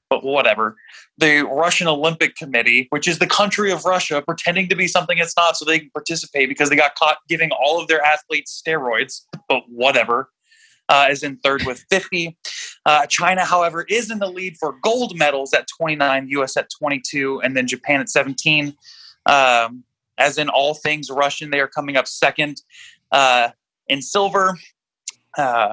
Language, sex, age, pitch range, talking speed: English, male, 20-39, 135-180 Hz, 175 wpm